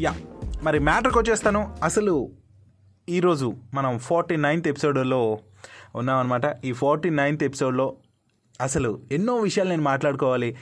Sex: male